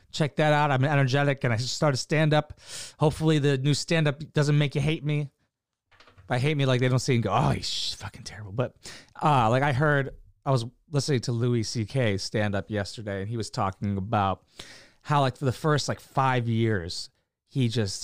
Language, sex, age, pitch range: English, male, 30-49, 110-145 Hz